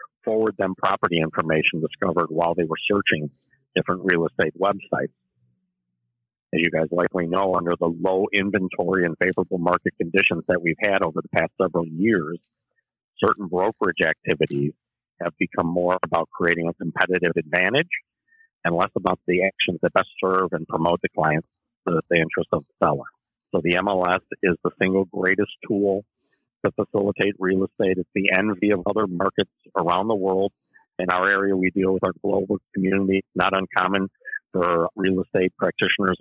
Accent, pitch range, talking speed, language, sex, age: American, 90-100 Hz, 165 wpm, English, male, 50-69